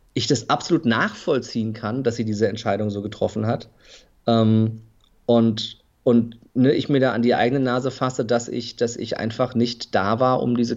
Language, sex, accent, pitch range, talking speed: German, male, German, 115-130 Hz, 175 wpm